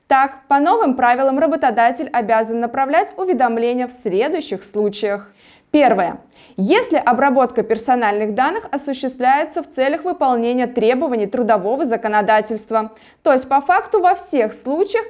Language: Russian